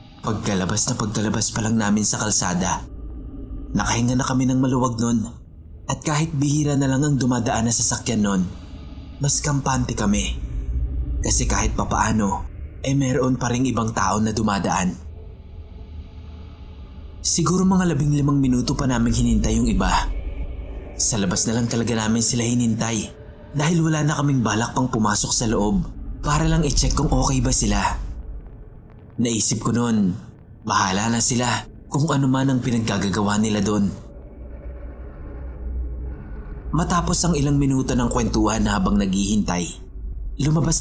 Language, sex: English, male